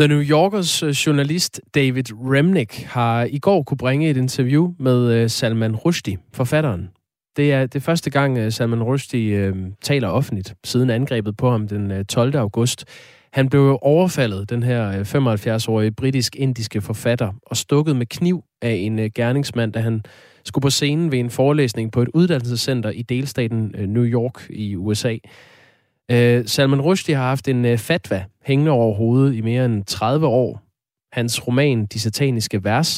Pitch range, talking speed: 110-140 Hz, 155 wpm